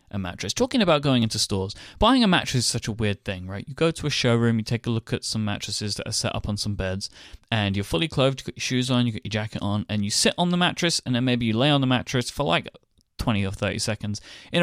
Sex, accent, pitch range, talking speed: male, British, 105-135 Hz, 285 wpm